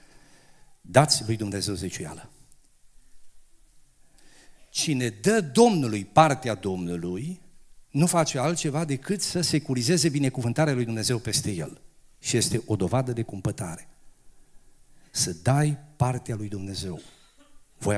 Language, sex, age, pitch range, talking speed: Romanian, male, 50-69, 100-140 Hz, 105 wpm